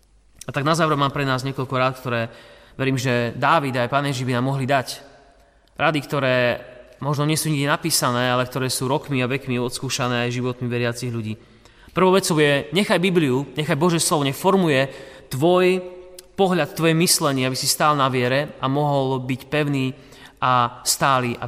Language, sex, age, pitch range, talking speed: Slovak, male, 30-49, 125-165 Hz, 175 wpm